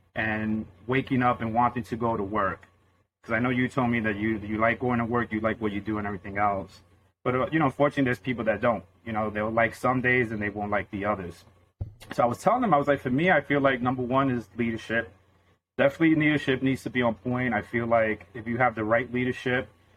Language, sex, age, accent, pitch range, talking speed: English, male, 30-49, American, 105-125 Hz, 250 wpm